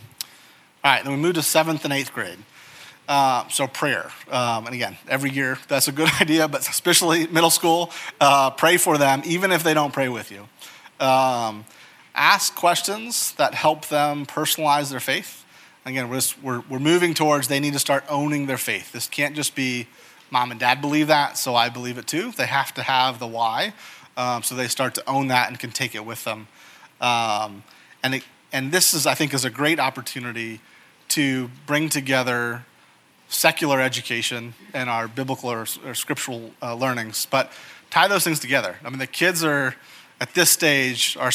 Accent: American